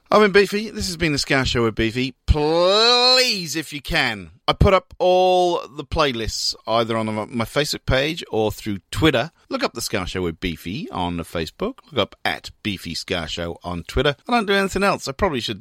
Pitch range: 105-175 Hz